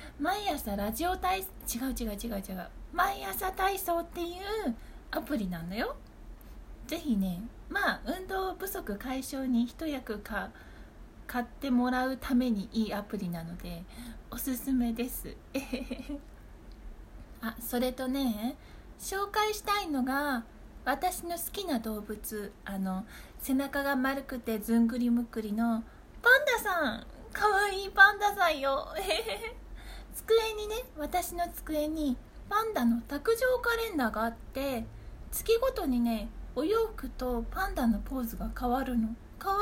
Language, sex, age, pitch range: Japanese, female, 20-39, 230-375 Hz